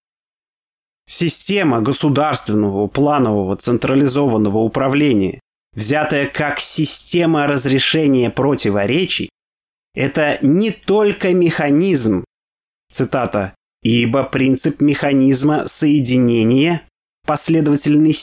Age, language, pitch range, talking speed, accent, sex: 20-39, Russian, 115-150 Hz, 65 wpm, native, male